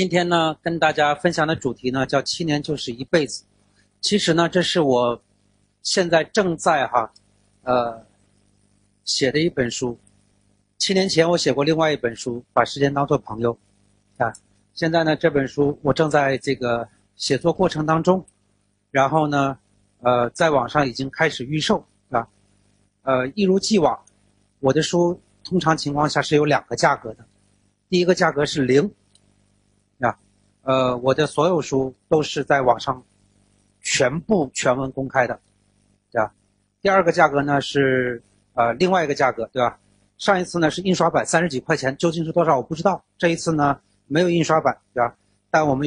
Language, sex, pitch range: Chinese, male, 100-160 Hz